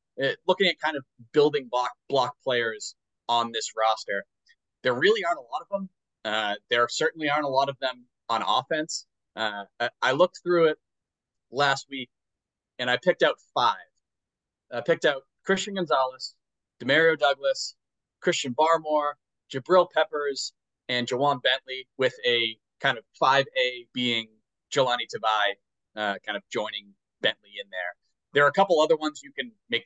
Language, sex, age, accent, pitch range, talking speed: English, male, 30-49, American, 125-170 Hz, 160 wpm